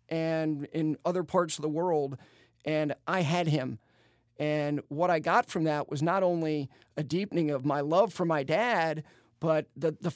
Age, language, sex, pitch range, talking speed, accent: 40-59, English, male, 150-185 Hz, 185 wpm, American